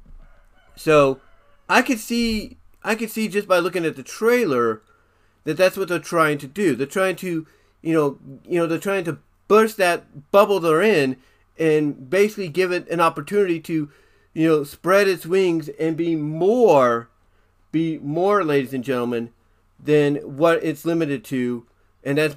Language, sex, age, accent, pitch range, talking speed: English, male, 40-59, American, 135-180 Hz, 165 wpm